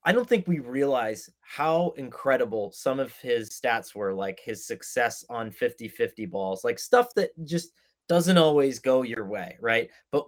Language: English